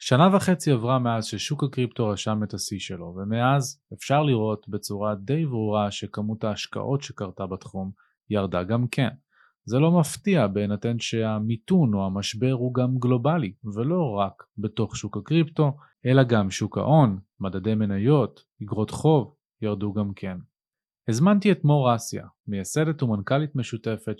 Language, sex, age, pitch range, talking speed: Hebrew, male, 30-49, 105-135 Hz, 140 wpm